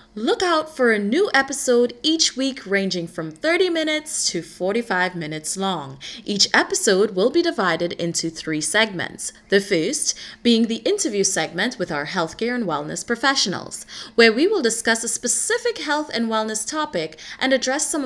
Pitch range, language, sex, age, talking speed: 185-270 Hz, English, female, 20-39, 165 wpm